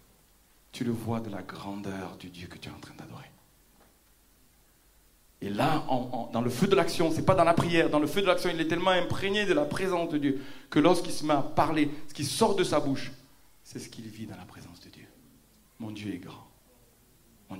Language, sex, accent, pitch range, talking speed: French, male, French, 120-165 Hz, 230 wpm